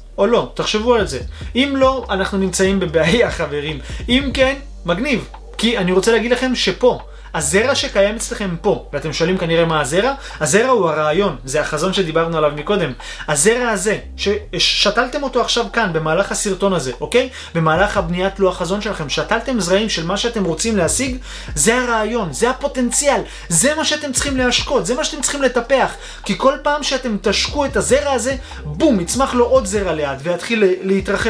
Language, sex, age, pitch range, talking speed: Hebrew, male, 30-49, 180-250 Hz, 170 wpm